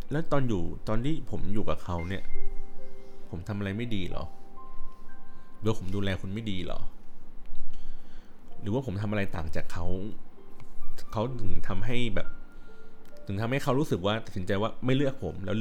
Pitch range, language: 95-120 Hz, Thai